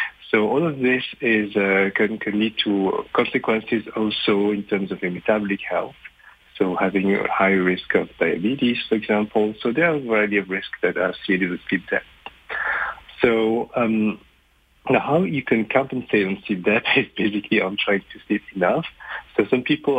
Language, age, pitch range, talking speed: English, 50-69, 100-125 Hz, 175 wpm